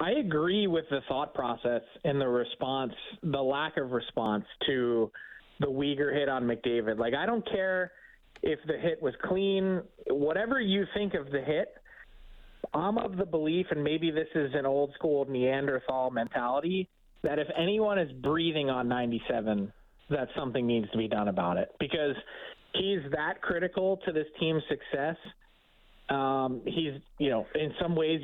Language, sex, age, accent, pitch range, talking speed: English, male, 30-49, American, 130-165 Hz, 160 wpm